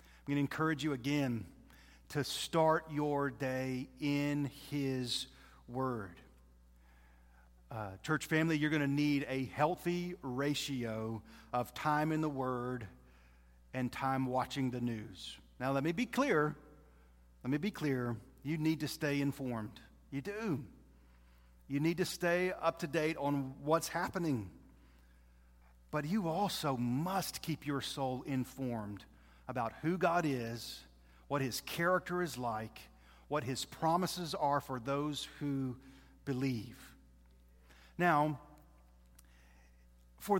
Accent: American